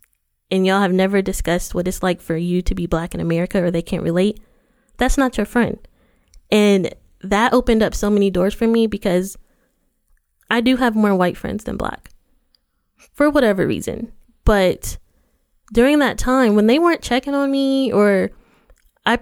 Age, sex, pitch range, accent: 20-39, female, 195-250 Hz, American